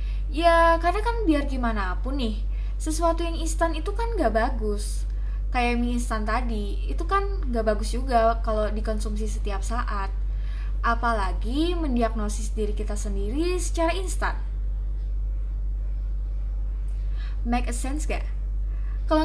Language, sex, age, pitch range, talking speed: Indonesian, female, 20-39, 225-315 Hz, 120 wpm